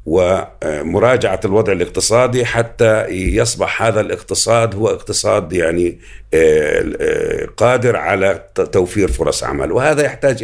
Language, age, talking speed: Arabic, 60-79, 100 wpm